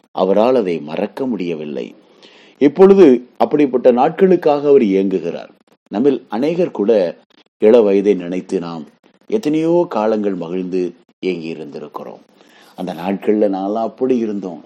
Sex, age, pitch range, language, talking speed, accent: male, 30-49, 100-160 Hz, Tamil, 100 wpm, native